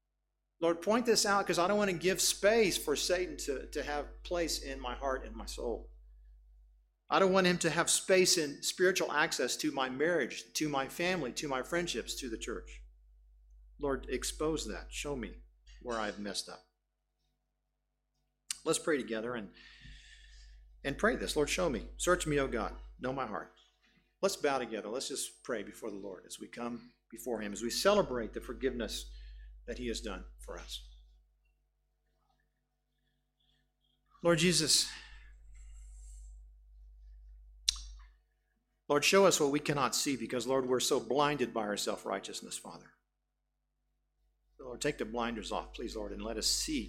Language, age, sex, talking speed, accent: English, 50-69, male, 160 wpm, American